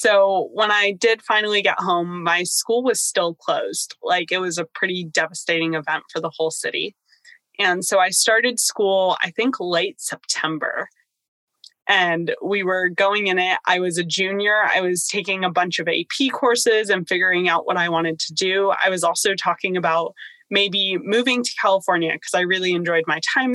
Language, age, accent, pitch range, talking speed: English, 20-39, American, 180-235 Hz, 185 wpm